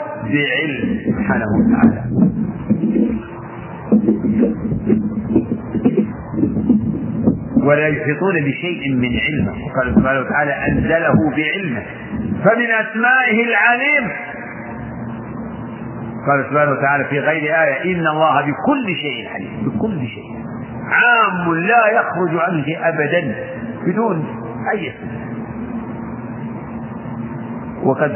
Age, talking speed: 50-69, 80 wpm